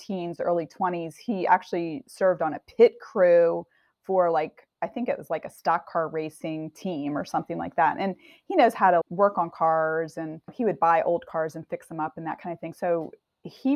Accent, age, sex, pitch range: American, 30-49, female, 170-210 Hz